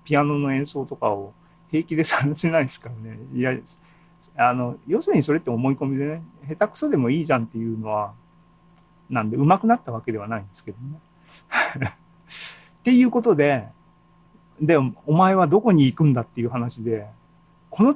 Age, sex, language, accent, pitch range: 40-59, male, Japanese, native, 120-175 Hz